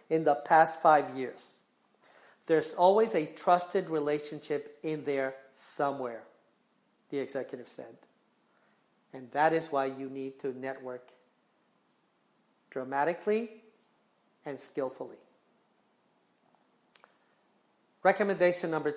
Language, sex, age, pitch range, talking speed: English, male, 40-59, 155-200 Hz, 90 wpm